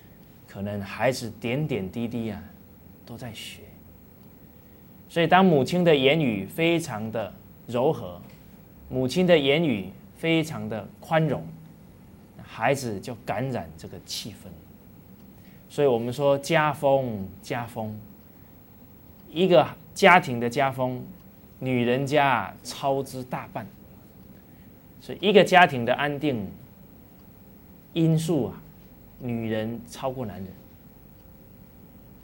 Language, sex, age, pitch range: English, male, 20-39, 105-150 Hz